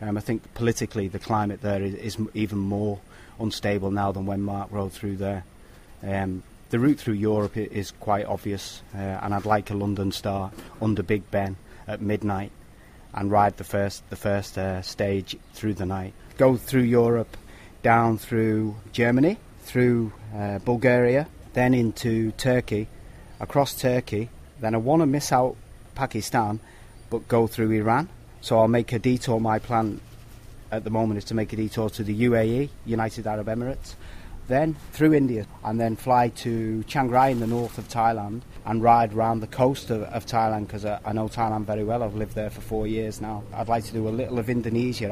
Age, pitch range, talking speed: 30-49, 105-115 Hz, 185 wpm